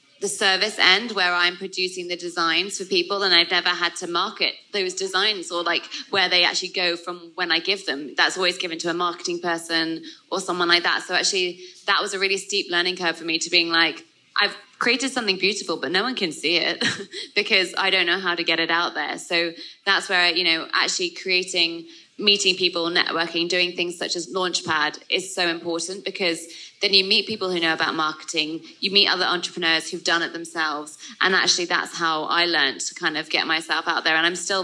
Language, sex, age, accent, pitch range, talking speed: English, female, 20-39, British, 170-190 Hz, 225 wpm